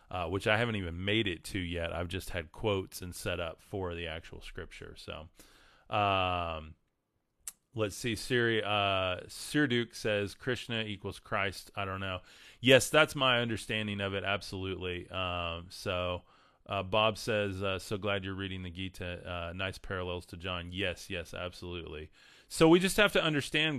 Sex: male